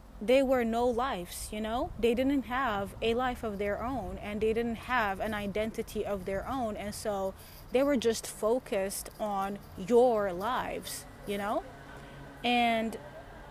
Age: 30-49